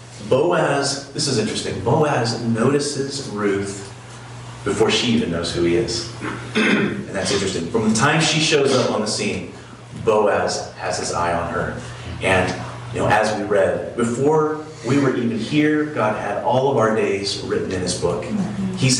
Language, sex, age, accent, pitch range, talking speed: English, male, 30-49, American, 115-145 Hz, 170 wpm